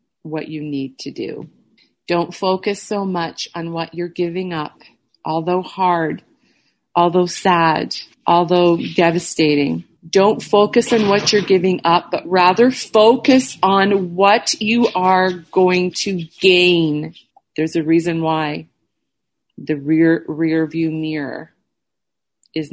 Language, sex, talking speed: English, female, 125 wpm